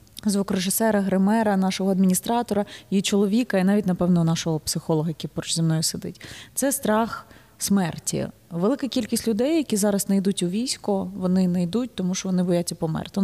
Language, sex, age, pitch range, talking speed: Ukrainian, female, 20-39, 175-205 Hz, 170 wpm